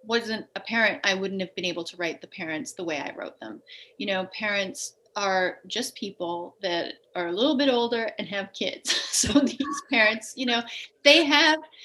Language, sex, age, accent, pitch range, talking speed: English, female, 30-49, American, 190-255 Hz, 200 wpm